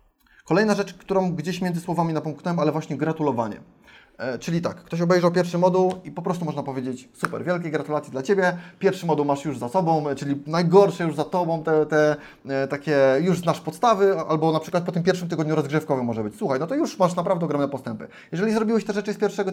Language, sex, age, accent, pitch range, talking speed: Polish, male, 20-39, native, 150-190 Hz, 210 wpm